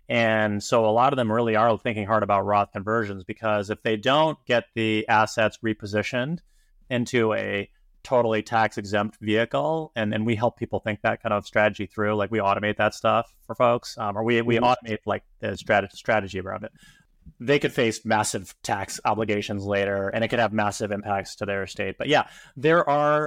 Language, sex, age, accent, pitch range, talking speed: English, male, 30-49, American, 105-120 Hz, 195 wpm